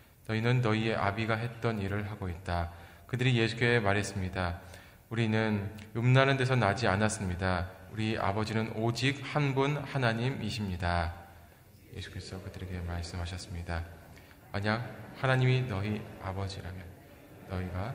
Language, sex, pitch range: Korean, male, 95-115 Hz